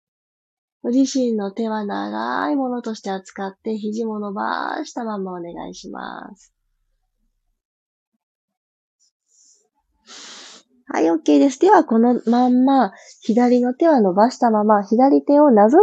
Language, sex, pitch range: Japanese, female, 195-260 Hz